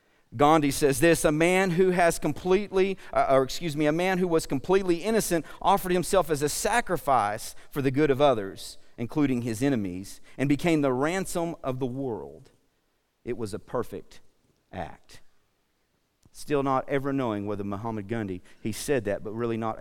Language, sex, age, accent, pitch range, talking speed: English, male, 50-69, American, 110-155 Hz, 165 wpm